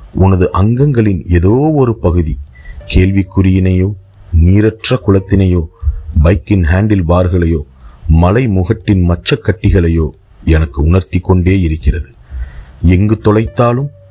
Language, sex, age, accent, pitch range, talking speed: Tamil, male, 40-59, native, 80-100 Hz, 90 wpm